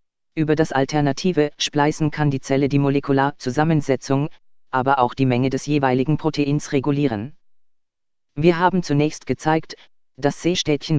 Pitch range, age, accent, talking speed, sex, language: 135-155 Hz, 40-59, German, 130 wpm, female, German